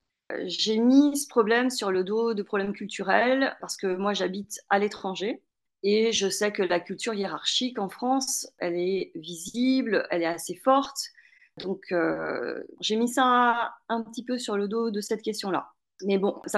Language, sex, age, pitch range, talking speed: French, female, 30-49, 195-240 Hz, 175 wpm